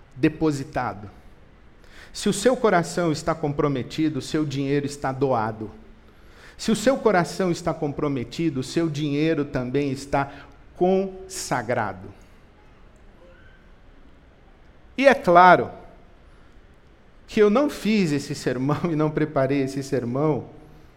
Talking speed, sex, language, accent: 110 wpm, male, Portuguese, Brazilian